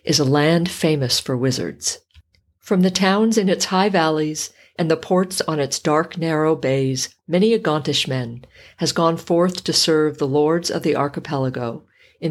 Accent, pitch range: American, 135-175 Hz